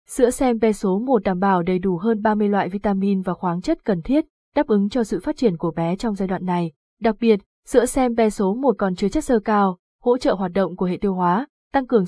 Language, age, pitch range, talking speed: Vietnamese, 20-39, 190-240 Hz, 255 wpm